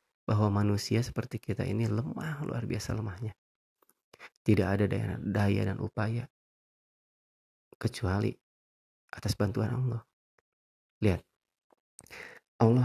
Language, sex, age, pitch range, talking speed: Indonesian, male, 30-49, 100-120 Hz, 95 wpm